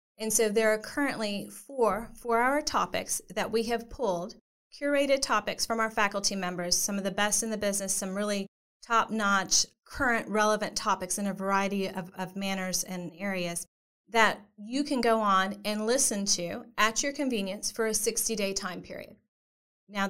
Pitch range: 200-240 Hz